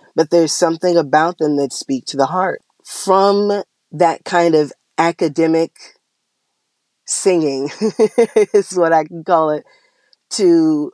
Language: English